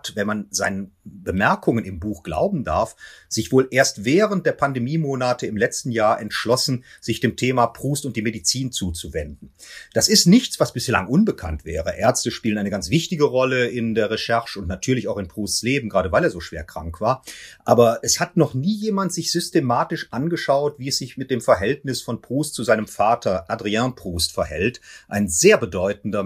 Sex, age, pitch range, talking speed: male, 40-59, 110-145 Hz, 185 wpm